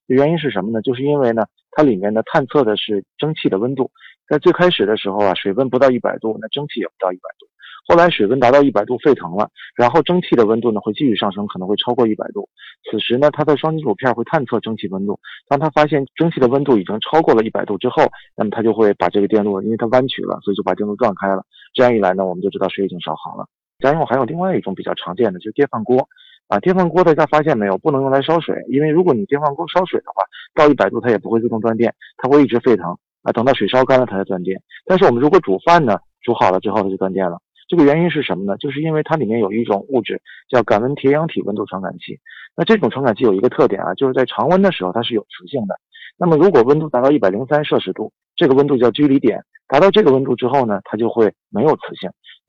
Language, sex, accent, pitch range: Chinese, male, native, 105-150 Hz